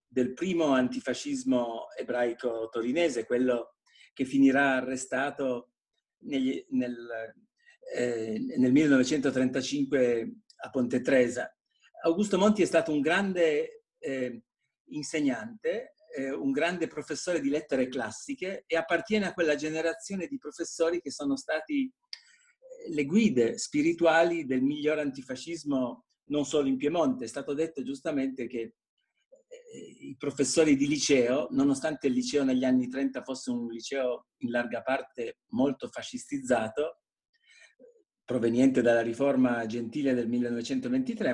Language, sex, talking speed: Italian, male, 120 wpm